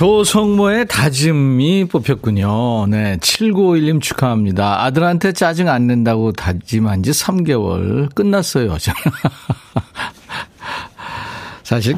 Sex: male